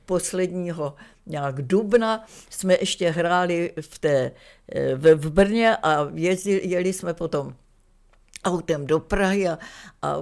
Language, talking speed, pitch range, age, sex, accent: Czech, 120 wpm, 175-225 Hz, 60-79, female, native